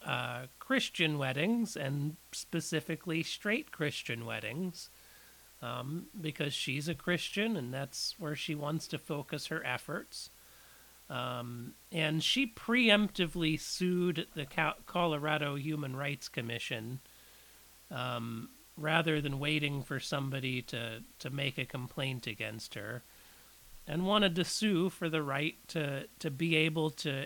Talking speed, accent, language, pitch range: 130 wpm, American, English, 130-175 Hz